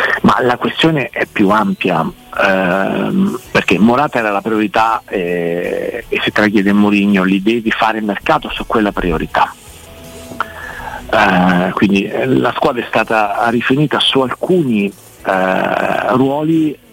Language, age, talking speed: Italian, 50-69, 130 wpm